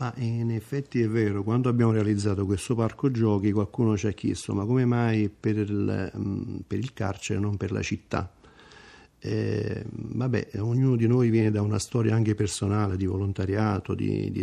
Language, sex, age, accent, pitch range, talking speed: Italian, male, 50-69, native, 100-110 Hz, 185 wpm